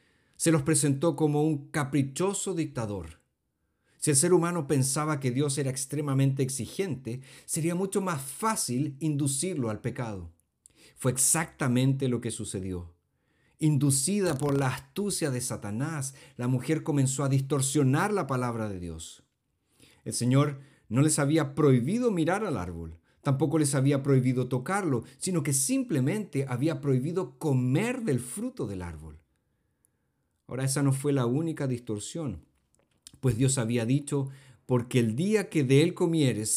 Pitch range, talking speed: 115-155 Hz, 140 wpm